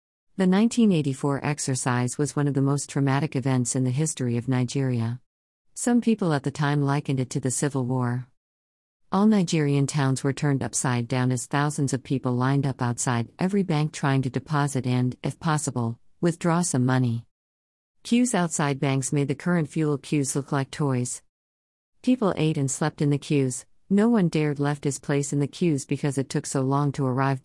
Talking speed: 190 wpm